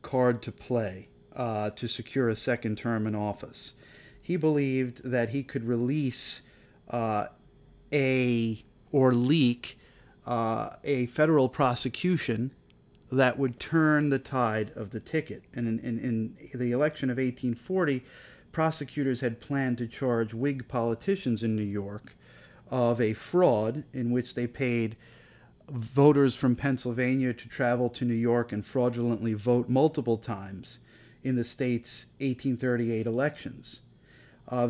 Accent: American